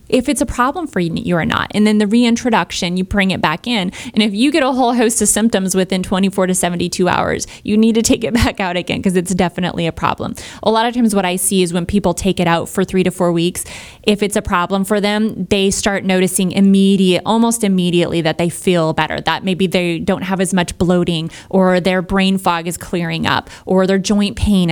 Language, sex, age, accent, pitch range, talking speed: English, female, 20-39, American, 180-210 Hz, 235 wpm